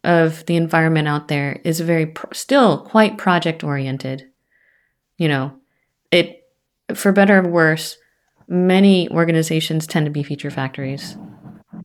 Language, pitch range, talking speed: English, 150-195 Hz, 125 wpm